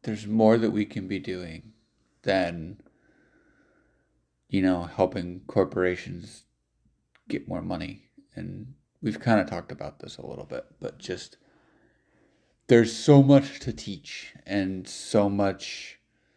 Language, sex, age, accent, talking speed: English, male, 30-49, American, 130 wpm